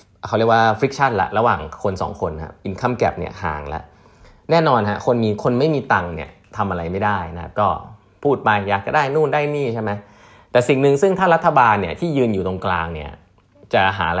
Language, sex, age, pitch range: Thai, male, 20-39, 90-130 Hz